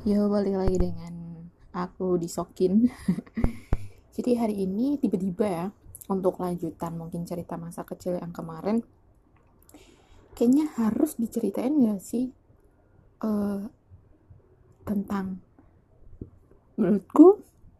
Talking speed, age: 90 wpm, 20-39